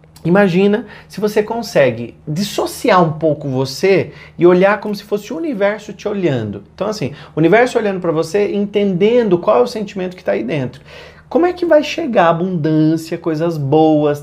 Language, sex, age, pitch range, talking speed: Portuguese, male, 30-49, 150-205 Hz, 175 wpm